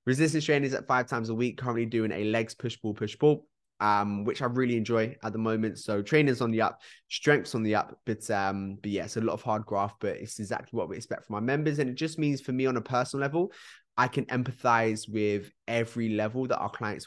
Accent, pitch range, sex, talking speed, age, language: British, 105-125 Hz, male, 250 wpm, 20-39, English